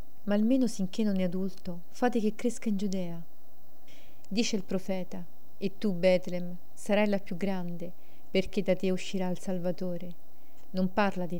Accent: native